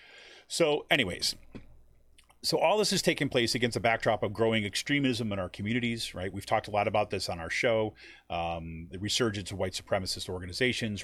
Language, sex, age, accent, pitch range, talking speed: English, male, 30-49, American, 95-120 Hz, 185 wpm